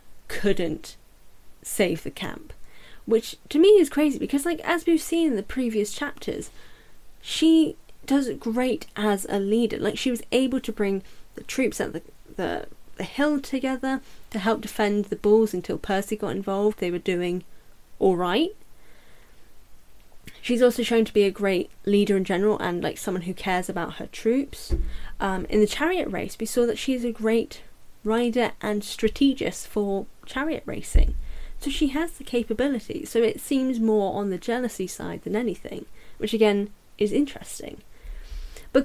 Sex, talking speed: female, 170 wpm